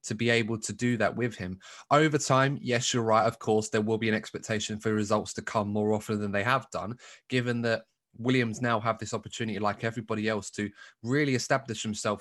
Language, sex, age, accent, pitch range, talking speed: English, male, 20-39, British, 105-125 Hz, 215 wpm